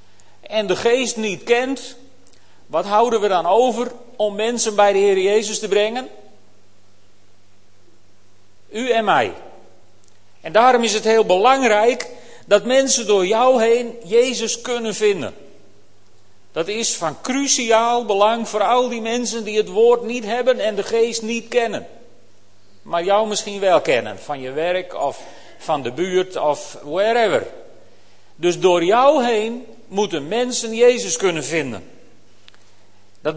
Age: 40-59